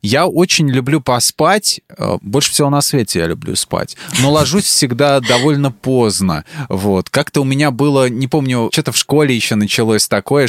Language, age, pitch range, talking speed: Russian, 20-39, 105-145 Hz, 160 wpm